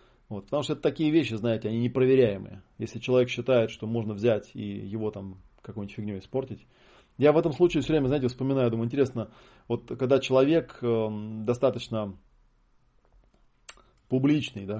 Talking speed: 145 wpm